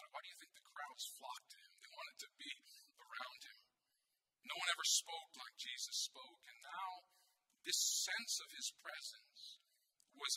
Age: 50-69